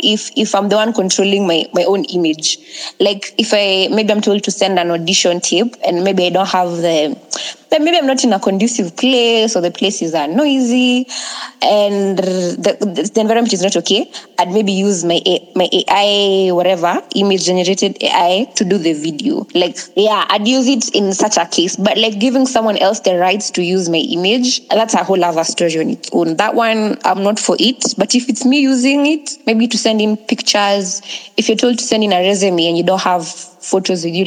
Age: 20-39